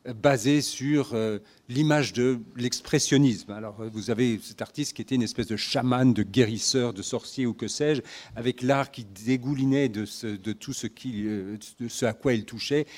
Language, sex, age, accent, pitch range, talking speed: French, male, 50-69, French, 115-140 Hz, 190 wpm